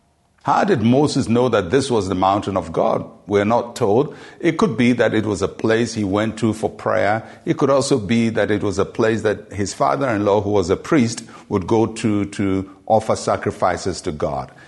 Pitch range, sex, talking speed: 100-130 Hz, male, 210 wpm